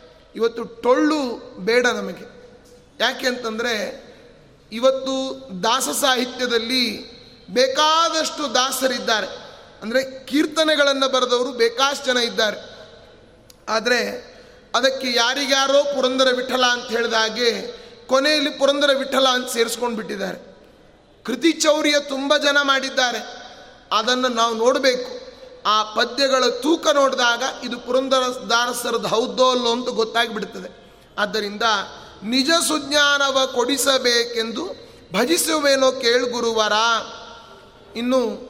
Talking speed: 90 wpm